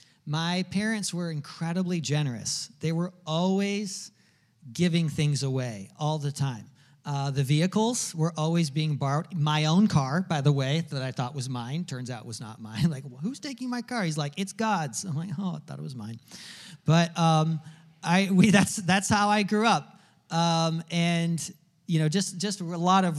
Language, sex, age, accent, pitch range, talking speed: English, male, 40-59, American, 145-185 Hz, 195 wpm